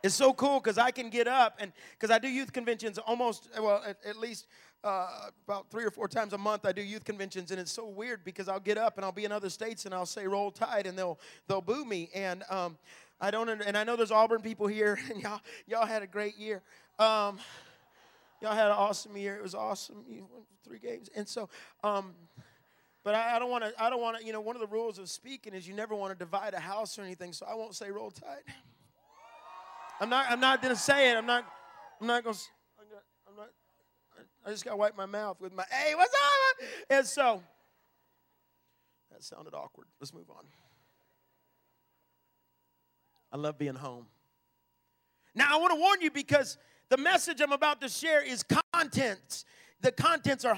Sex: male